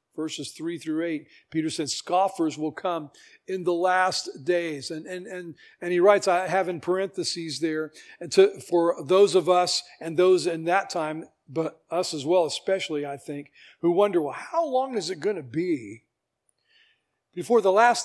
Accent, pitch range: American, 165-210 Hz